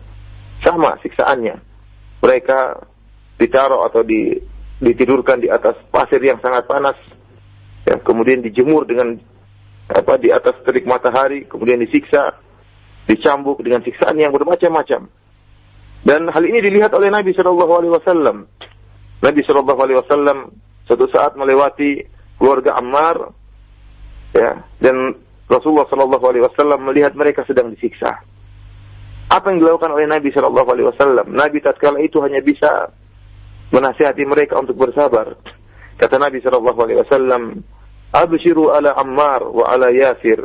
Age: 40-59